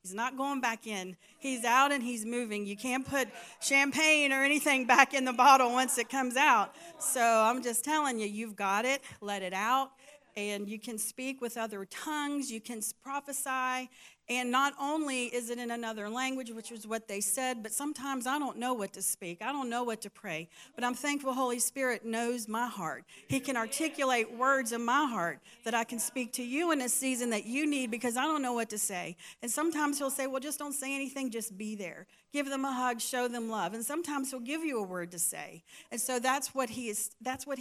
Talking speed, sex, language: 220 wpm, female, English